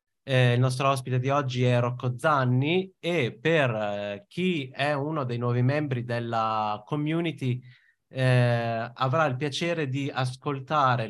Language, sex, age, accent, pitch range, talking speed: Italian, male, 30-49, native, 120-145 Hz, 140 wpm